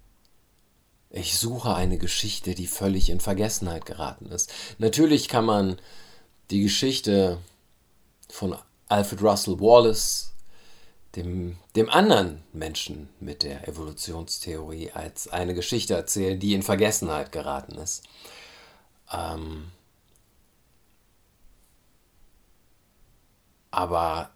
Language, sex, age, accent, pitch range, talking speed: German, male, 50-69, German, 85-105 Hz, 90 wpm